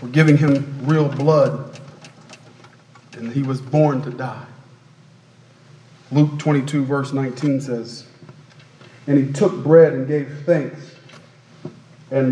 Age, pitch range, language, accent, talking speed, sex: 40-59, 145-185 Hz, English, American, 115 wpm, male